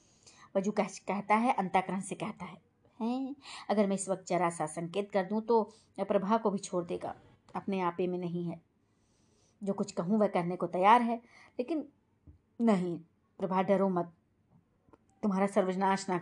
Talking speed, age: 165 wpm, 20-39